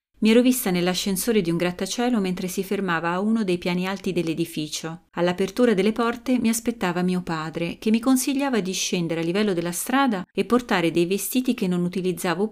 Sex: female